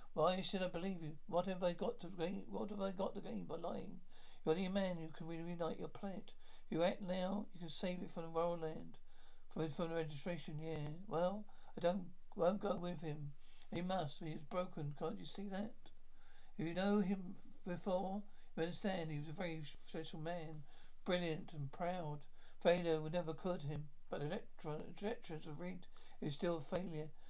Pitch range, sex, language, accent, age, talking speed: 150-180 Hz, male, English, British, 60-79, 195 wpm